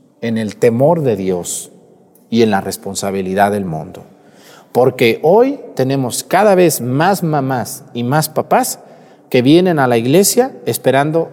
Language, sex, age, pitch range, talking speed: Spanish, male, 40-59, 130-195 Hz, 145 wpm